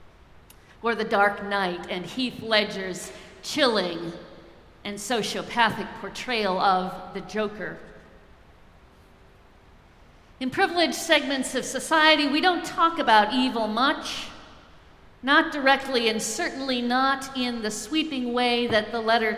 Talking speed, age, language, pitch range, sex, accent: 115 wpm, 50-69, English, 200-255 Hz, female, American